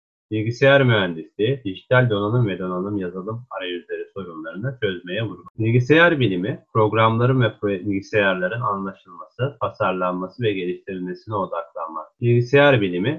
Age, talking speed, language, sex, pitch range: 30-49, 110 wpm, Turkish, male, 95-130 Hz